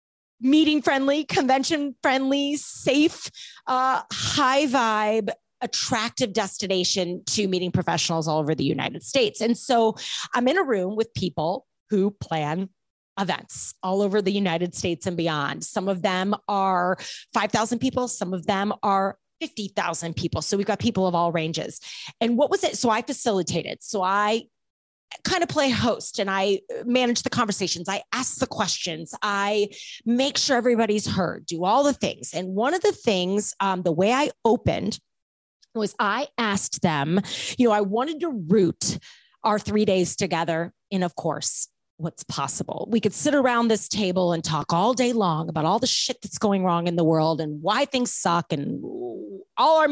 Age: 30-49